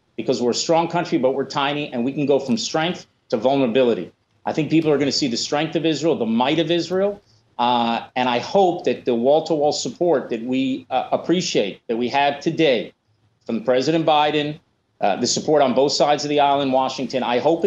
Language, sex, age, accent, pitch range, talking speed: English, male, 40-59, American, 145-185 Hz, 210 wpm